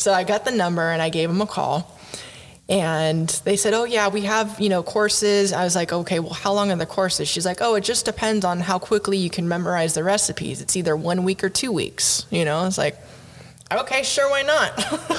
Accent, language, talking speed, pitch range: American, English, 235 wpm, 170-215 Hz